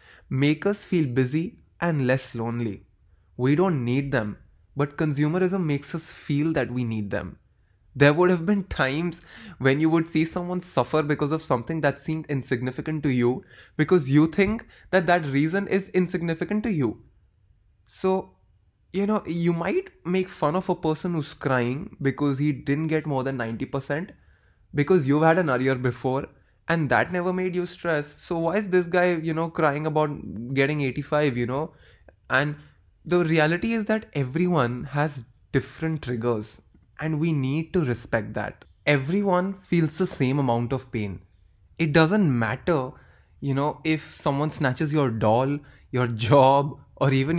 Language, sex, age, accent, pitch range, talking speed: English, male, 20-39, Indian, 130-170 Hz, 165 wpm